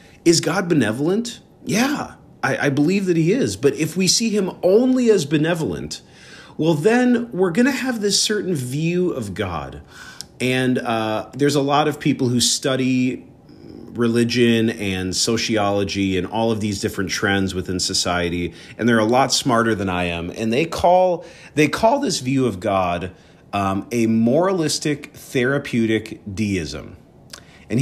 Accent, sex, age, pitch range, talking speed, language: American, male, 40-59, 110-170 Hz, 155 wpm, English